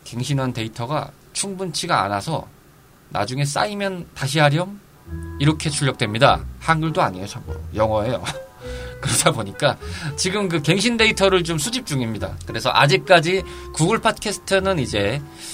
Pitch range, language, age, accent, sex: 115-170 Hz, Korean, 20-39, native, male